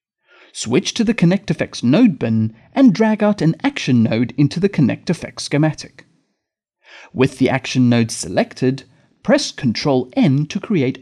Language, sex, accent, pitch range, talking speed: English, male, British, 125-200 Hz, 135 wpm